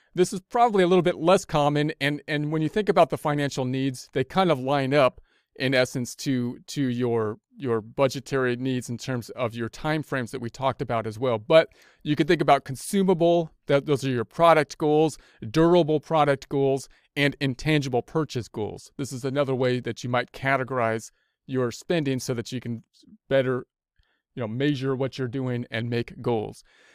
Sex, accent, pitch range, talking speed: male, American, 125-150 Hz, 185 wpm